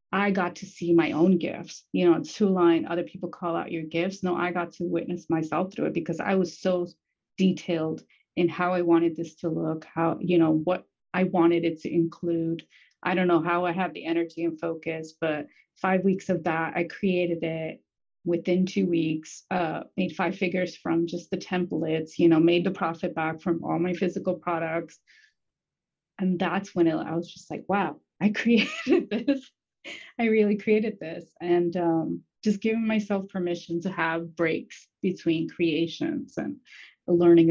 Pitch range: 165-195 Hz